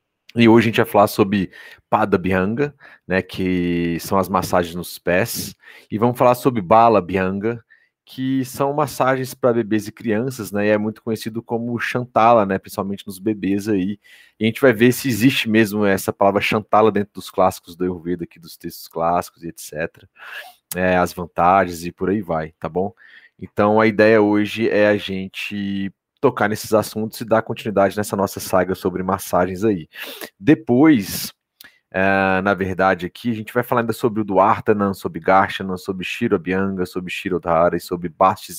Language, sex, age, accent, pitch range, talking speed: Portuguese, male, 30-49, Brazilian, 95-110 Hz, 180 wpm